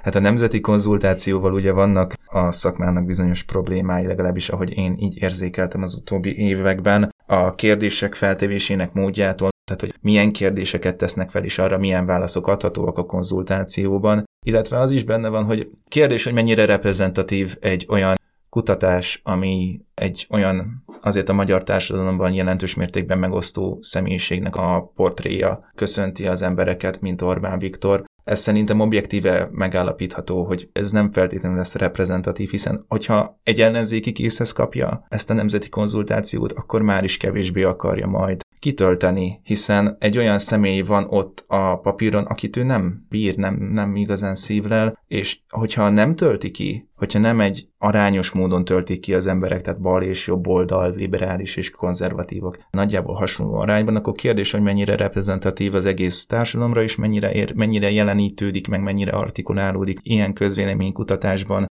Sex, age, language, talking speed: male, 20-39, Hungarian, 150 wpm